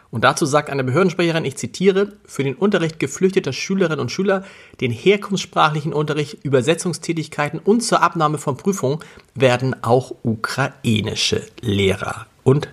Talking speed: 130 wpm